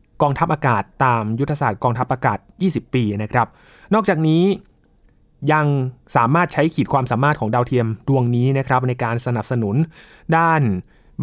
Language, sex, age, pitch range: Thai, male, 20-39, 115-145 Hz